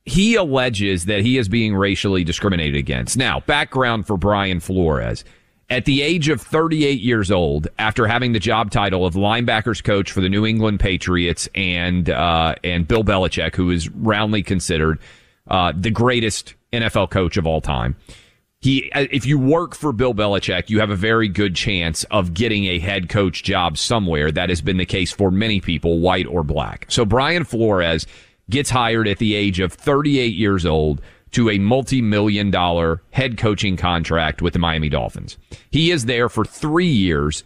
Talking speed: 180 wpm